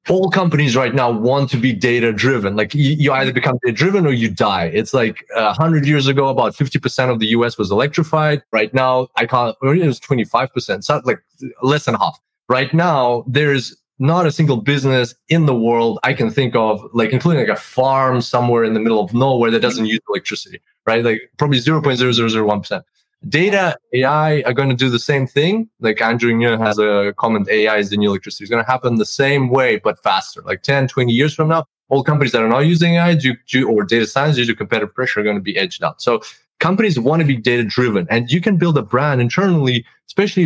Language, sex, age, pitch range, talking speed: English, male, 20-39, 115-140 Hz, 235 wpm